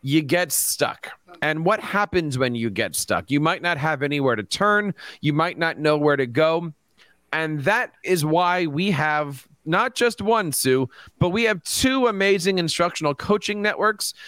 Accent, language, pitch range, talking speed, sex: American, English, 145-190 Hz, 175 wpm, male